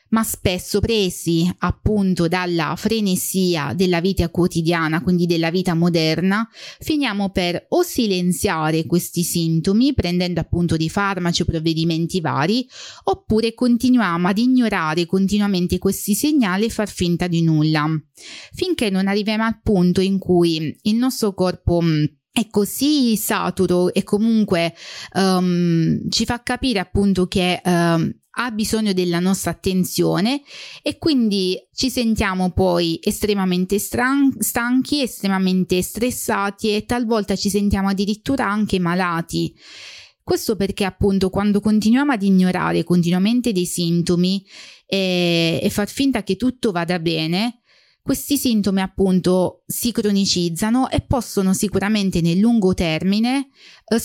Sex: female